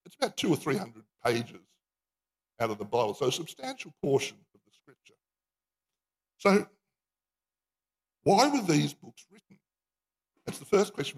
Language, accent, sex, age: English, Australian, male, 60-79